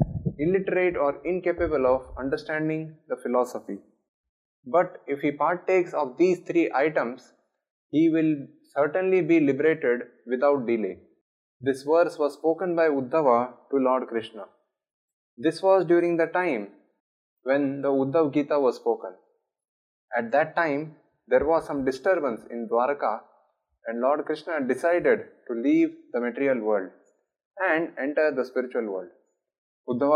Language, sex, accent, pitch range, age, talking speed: English, male, Indian, 130-165 Hz, 20-39, 130 wpm